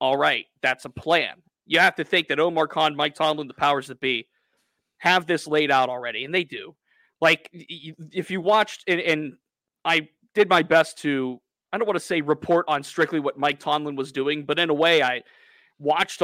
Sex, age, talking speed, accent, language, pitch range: male, 30-49, 205 wpm, American, English, 140-180 Hz